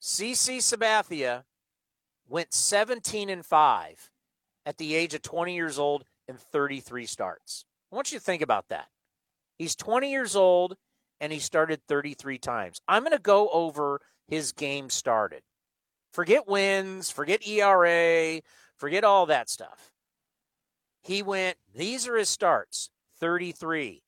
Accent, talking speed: American, 135 wpm